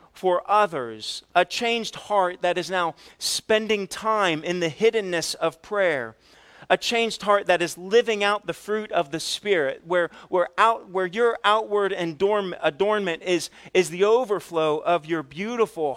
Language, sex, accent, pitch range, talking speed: English, male, American, 125-180 Hz, 160 wpm